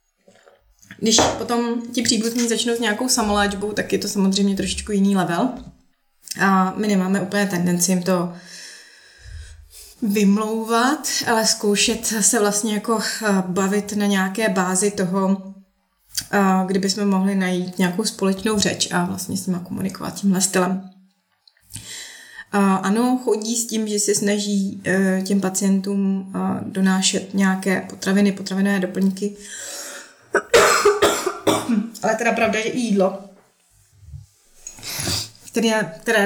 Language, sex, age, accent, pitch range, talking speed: Czech, female, 20-39, native, 190-220 Hz, 115 wpm